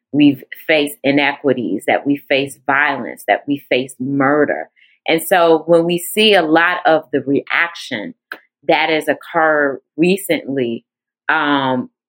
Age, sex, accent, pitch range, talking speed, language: 30-49, female, American, 145-220 Hz, 130 wpm, English